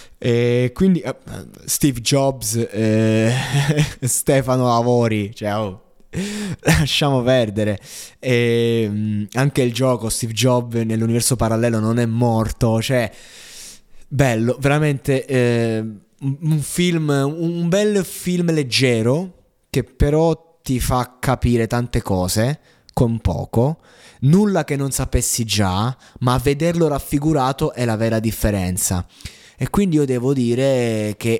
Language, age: Italian, 20-39